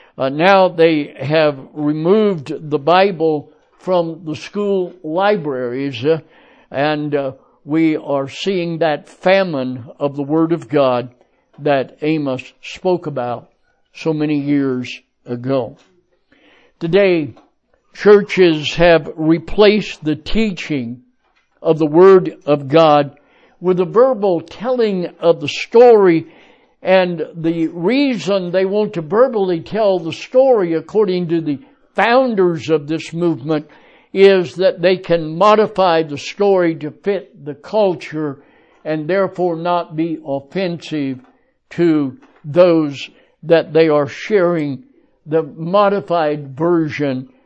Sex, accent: male, American